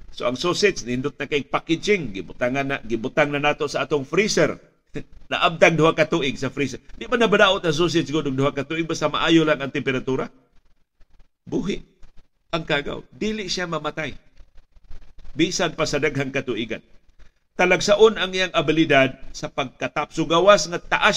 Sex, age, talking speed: male, 50-69, 155 wpm